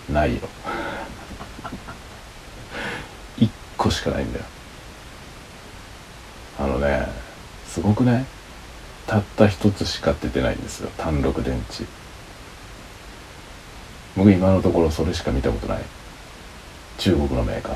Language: Japanese